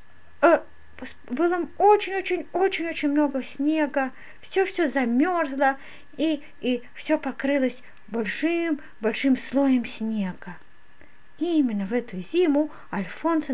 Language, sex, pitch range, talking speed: Russian, female, 230-310 Hz, 90 wpm